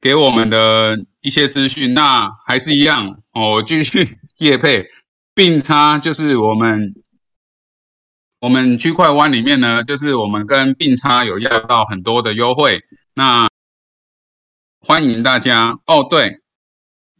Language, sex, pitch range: Chinese, male, 105-140 Hz